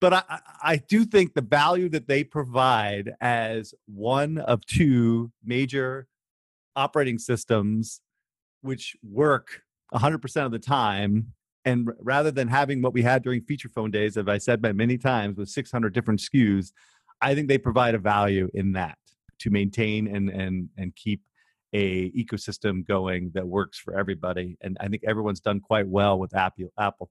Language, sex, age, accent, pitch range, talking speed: English, male, 40-59, American, 100-135 Hz, 165 wpm